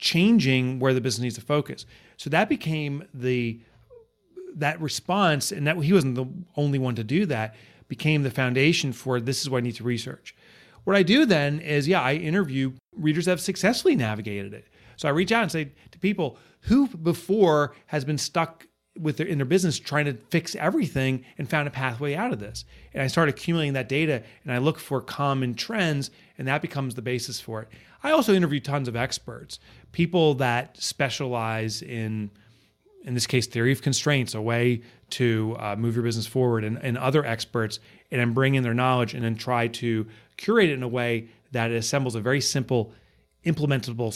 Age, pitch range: 30-49, 115-150 Hz